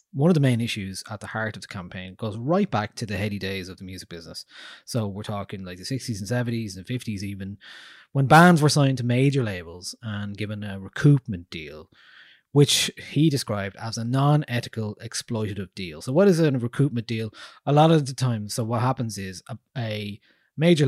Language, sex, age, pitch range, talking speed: English, male, 20-39, 100-130 Hz, 205 wpm